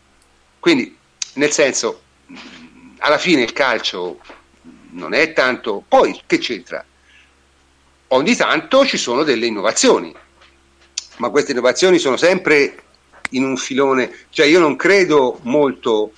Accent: native